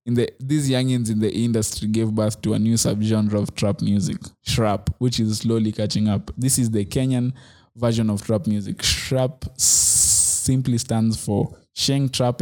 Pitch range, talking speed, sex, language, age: 110-120 Hz, 180 wpm, male, English, 20-39